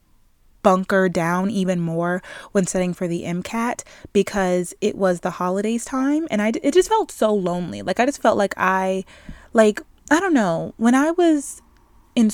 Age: 20-39